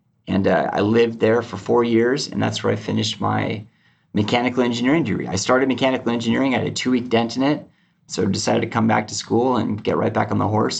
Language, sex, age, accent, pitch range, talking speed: English, male, 30-49, American, 100-115 Hz, 240 wpm